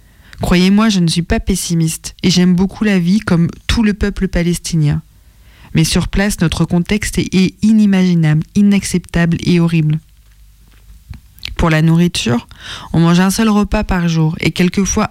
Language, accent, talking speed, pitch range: French, French, 150 wpm, 160-190 Hz